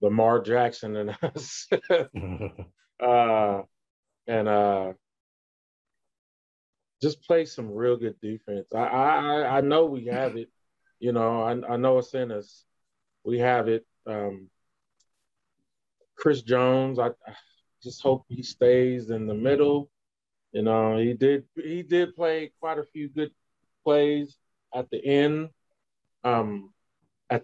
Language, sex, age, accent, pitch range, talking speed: English, male, 30-49, American, 105-130 Hz, 130 wpm